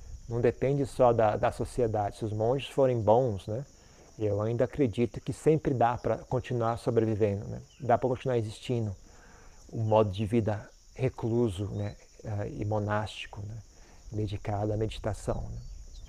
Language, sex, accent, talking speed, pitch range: Portuguese, male, Brazilian, 150 wpm, 105-125 Hz